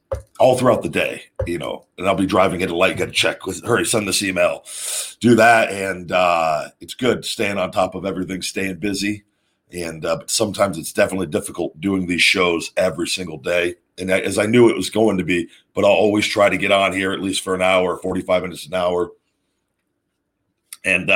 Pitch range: 90-110 Hz